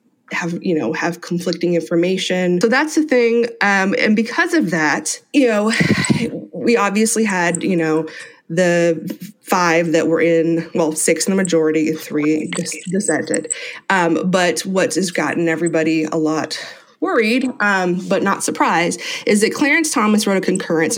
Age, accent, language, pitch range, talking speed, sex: 20-39, American, English, 165-215 Hz, 155 wpm, female